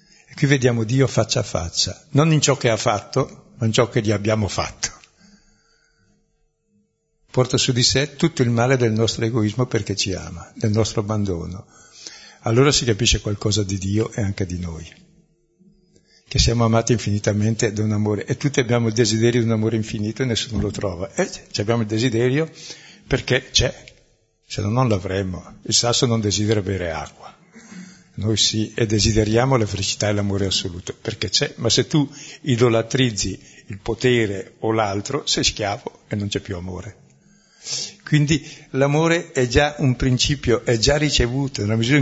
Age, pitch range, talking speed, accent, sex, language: 60-79, 105-140 Hz, 170 wpm, native, male, Italian